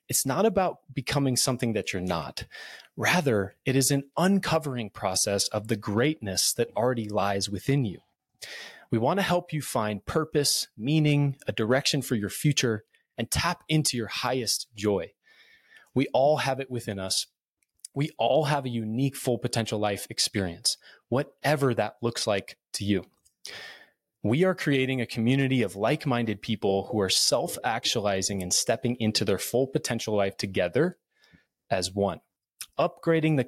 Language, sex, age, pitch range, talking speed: English, male, 30-49, 105-140 Hz, 150 wpm